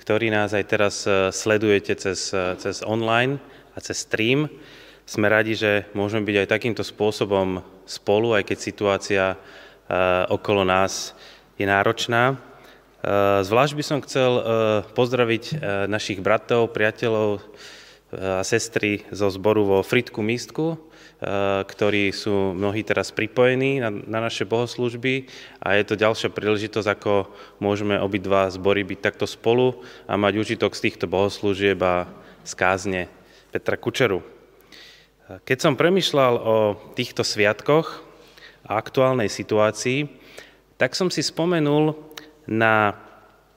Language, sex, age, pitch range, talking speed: Slovak, male, 20-39, 100-125 Hz, 120 wpm